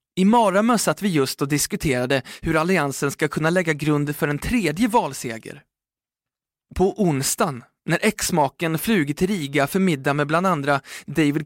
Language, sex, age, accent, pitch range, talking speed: Swedish, male, 20-39, native, 135-190 Hz, 155 wpm